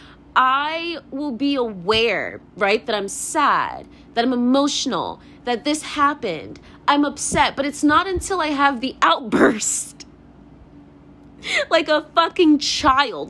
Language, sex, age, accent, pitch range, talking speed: English, female, 20-39, American, 245-335 Hz, 125 wpm